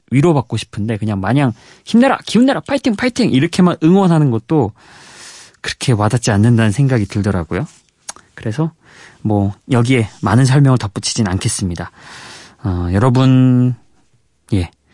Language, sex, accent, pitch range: Korean, male, native, 100-155 Hz